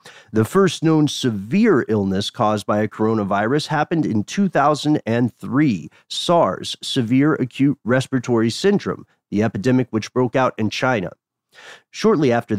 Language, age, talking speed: English, 40-59, 125 wpm